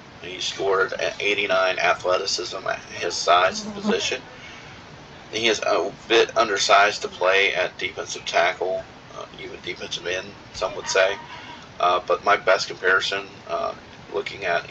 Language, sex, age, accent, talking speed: English, male, 40-59, American, 145 wpm